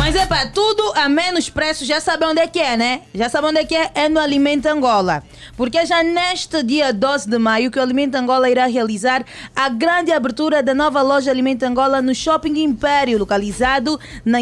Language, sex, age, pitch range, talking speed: Portuguese, female, 20-39, 245-305 Hz, 210 wpm